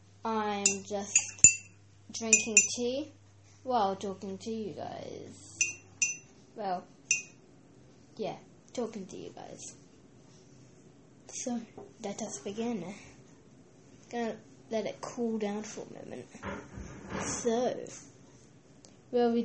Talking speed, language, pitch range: 85 wpm, English, 195-235 Hz